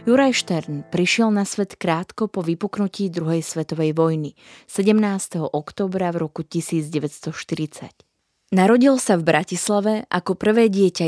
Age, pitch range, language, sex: 20-39, 165-205 Hz, Slovak, female